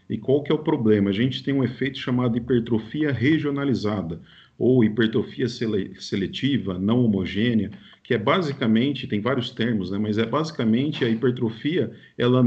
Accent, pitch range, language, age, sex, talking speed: Brazilian, 110-135 Hz, Portuguese, 40-59, male, 155 wpm